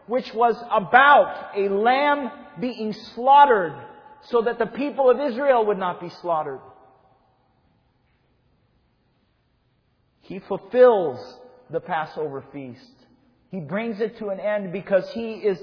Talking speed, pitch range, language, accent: 120 wpm, 165-235 Hz, English, American